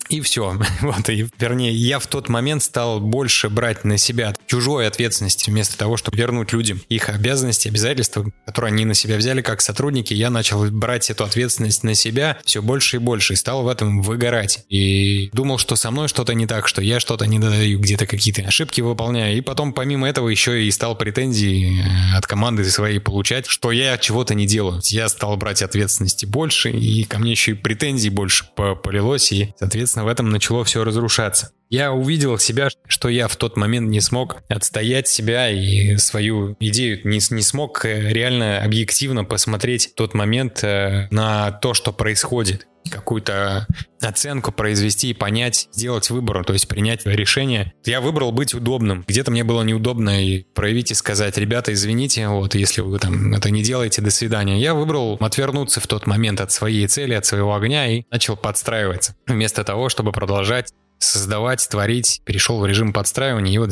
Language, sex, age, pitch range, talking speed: Russian, male, 20-39, 105-120 Hz, 180 wpm